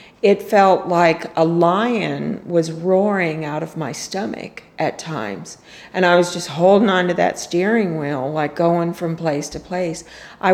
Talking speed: 165 wpm